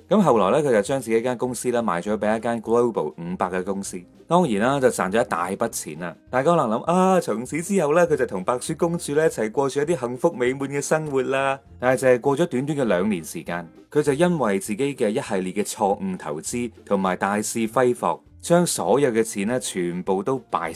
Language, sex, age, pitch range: Chinese, male, 30-49, 105-150 Hz